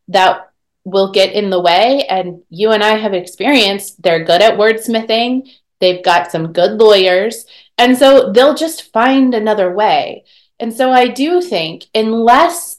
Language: English